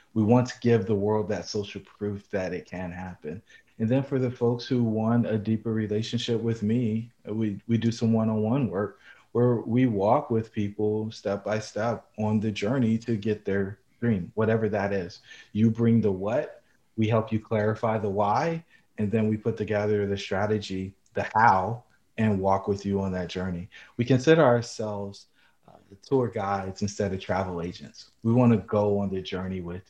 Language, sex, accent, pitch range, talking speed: English, male, American, 100-115 Hz, 185 wpm